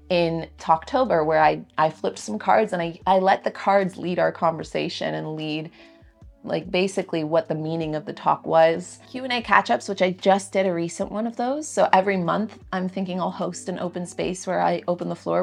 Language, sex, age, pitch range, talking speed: English, female, 30-49, 160-195 Hz, 210 wpm